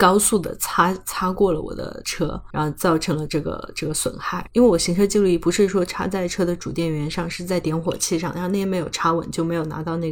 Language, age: Chinese, 20-39